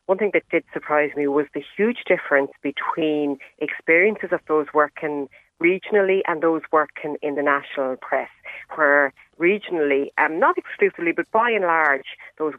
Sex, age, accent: female, 40-59, Irish